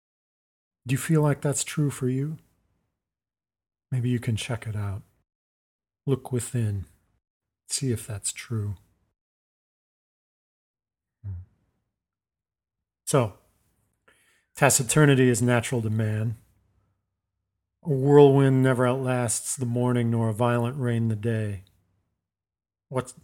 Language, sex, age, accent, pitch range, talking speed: English, male, 40-59, American, 100-130 Hz, 100 wpm